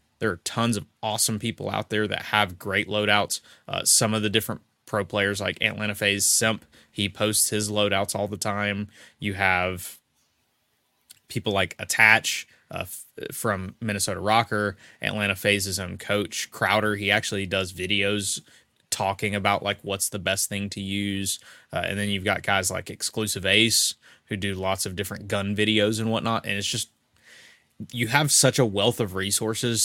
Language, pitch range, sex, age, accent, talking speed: English, 100-115 Hz, male, 20-39, American, 170 wpm